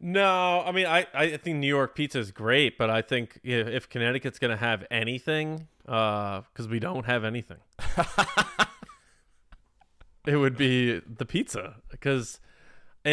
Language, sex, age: English, male, 20-39